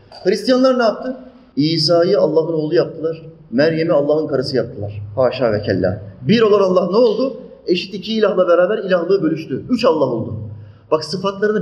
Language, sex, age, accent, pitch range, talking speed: Turkish, male, 40-59, native, 130-185 Hz, 150 wpm